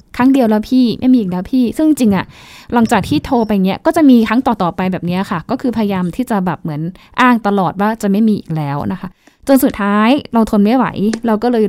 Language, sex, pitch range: Thai, female, 190-235 Hz